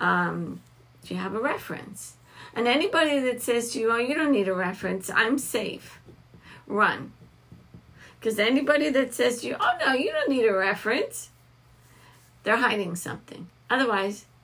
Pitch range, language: 190-260 Hz, English